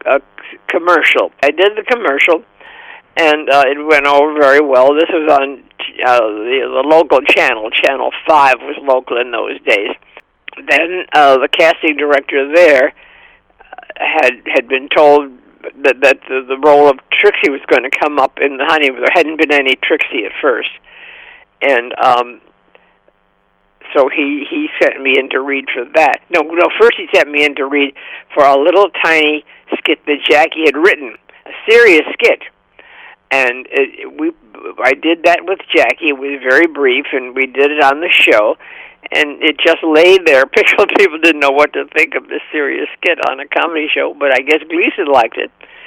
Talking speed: 180 wpm